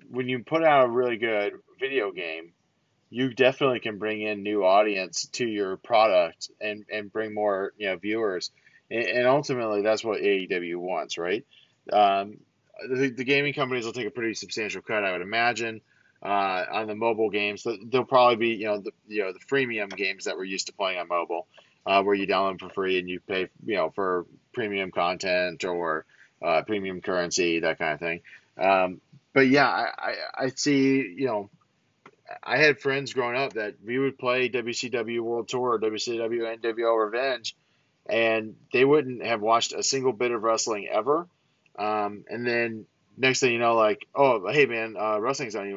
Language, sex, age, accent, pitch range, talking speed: English, male, 30-49, American, 105-130 Hz, 190 wpm